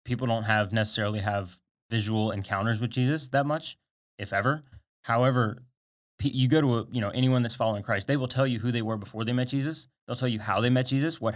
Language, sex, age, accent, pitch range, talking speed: English, male, 20-39, American, 100-120 Hz, 220 wpm